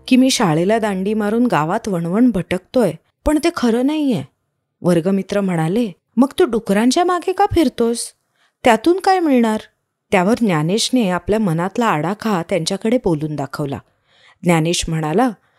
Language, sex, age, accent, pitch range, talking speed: Marathi, female, 30-49, native, 175-255 Hz, 125 wpm